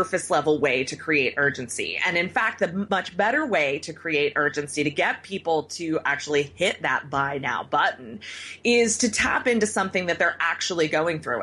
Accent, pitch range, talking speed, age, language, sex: American, 160-225 Hz, 190 wpm, 30-49, English, female